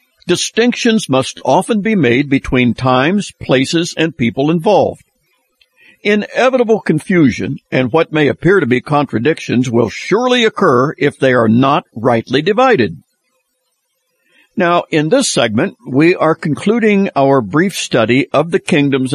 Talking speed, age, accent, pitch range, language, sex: 130 wpm, 60-79, American, 130-195 Hz, English, male